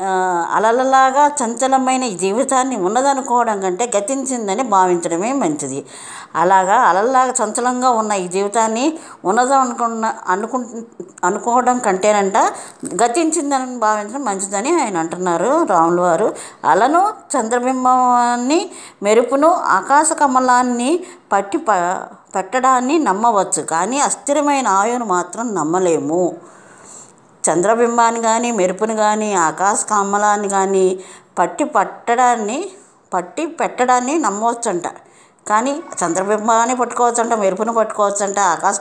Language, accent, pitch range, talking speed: Telugu, native, 190-255 Hz, 95 wpm